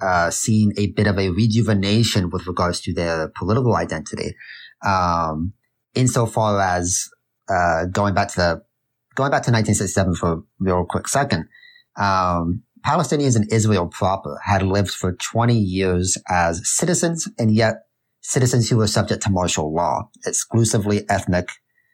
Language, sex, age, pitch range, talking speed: English, male, 30-49, 90-115 Hz, 150 wpm